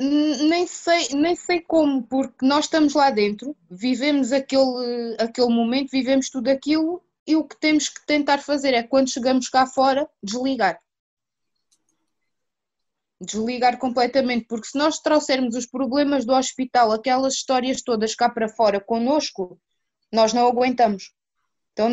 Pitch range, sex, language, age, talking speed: 235-290 Hz, female, Portuguese, 20-39, 135 wpm